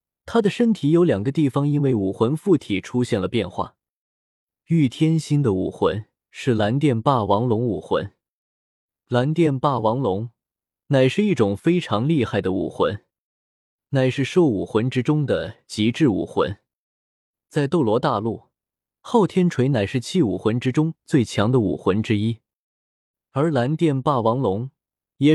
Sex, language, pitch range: male, Chinese, 110-150 Hz